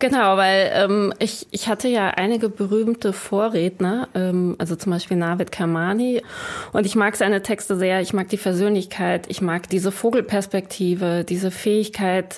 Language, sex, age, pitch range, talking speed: German, female, 20-39, 180-220 Hz, 155 wpm